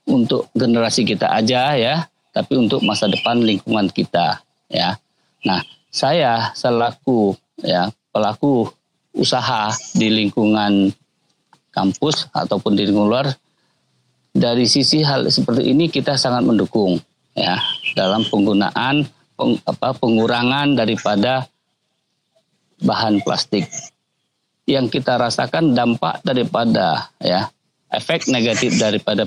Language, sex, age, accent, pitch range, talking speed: Indonesian, male, 50-69, native, 105-140 Hz, 105 wpm